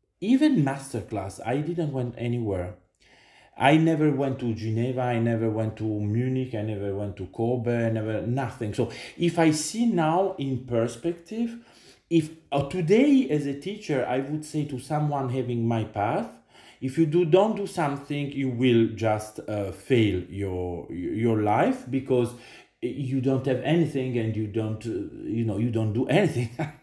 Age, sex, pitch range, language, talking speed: 40-59, male, 115-155 Hz, English, 170 wpm